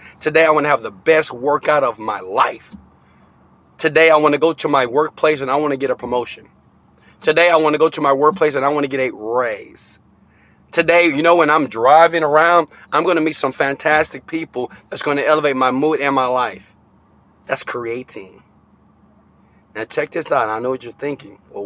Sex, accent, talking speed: male, American, 210 wpm